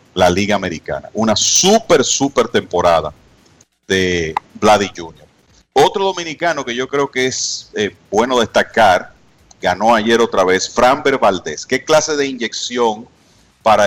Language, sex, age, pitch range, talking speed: Spanish, male, 40-59, 100-135 Hz, 135 wpm